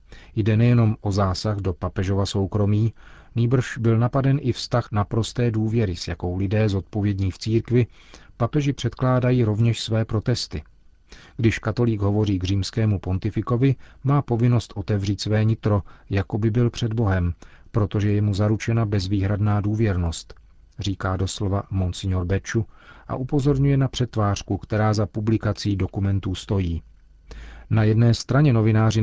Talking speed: 130 wpm